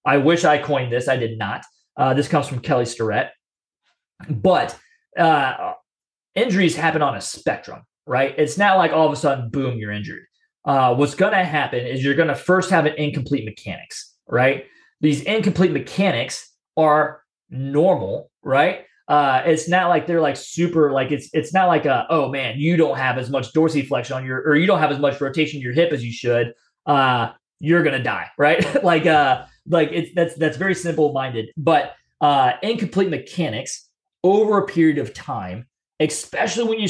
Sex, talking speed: male, 190 wpm